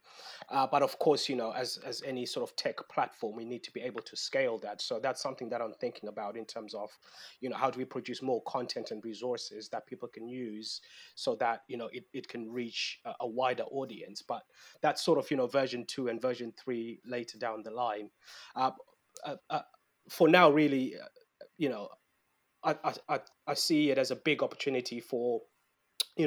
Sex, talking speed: male, 210 wpm